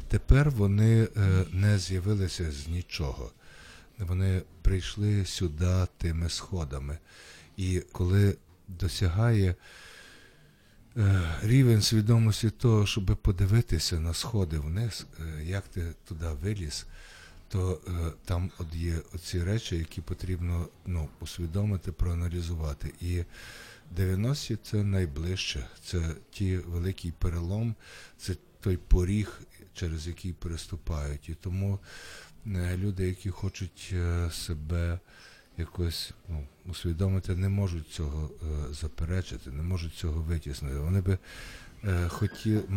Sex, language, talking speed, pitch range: male, Ukrainian, 100 wpm, 85-100 Hz